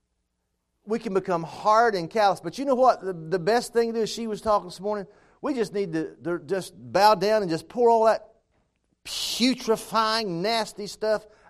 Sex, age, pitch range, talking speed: male, 50-69, 155-225 Hz, 195 wpm